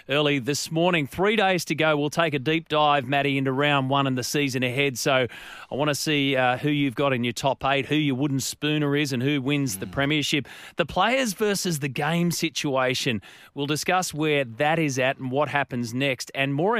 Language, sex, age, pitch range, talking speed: English, male, 30-49, 135-165 Hz, 220 wpm